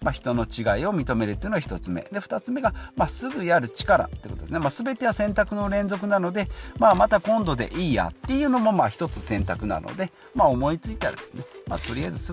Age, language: 40-59, Japanese